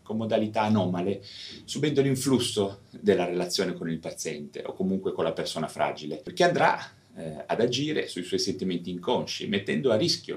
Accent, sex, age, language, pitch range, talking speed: native, male, 30-49, Italian, 80-120 Hz, 160 wpm